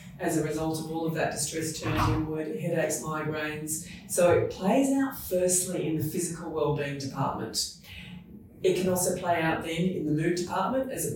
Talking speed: 185 wpm